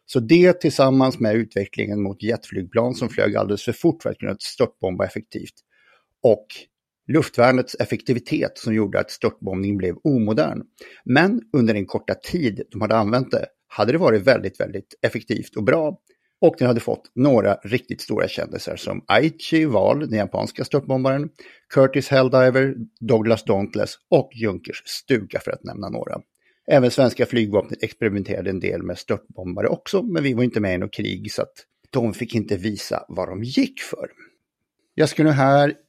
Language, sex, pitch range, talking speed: Swedish, male, 105-135 Hz, 160 wpm